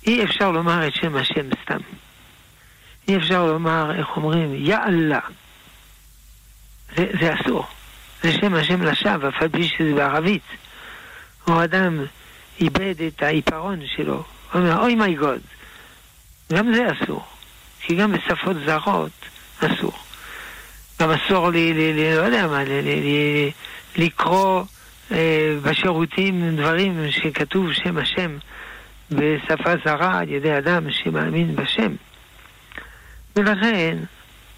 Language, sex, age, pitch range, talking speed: Hebrew, male, 60-79, 145-180 Hz, 115 wpm